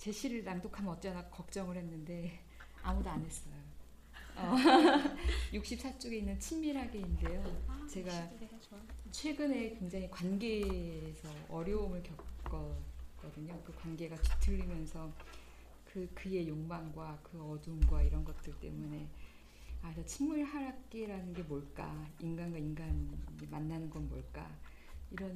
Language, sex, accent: Korean, female, native